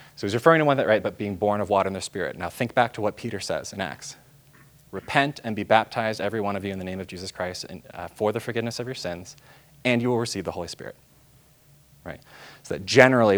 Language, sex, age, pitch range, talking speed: English, male, 20-39, 90-115 Hz, 255 wpm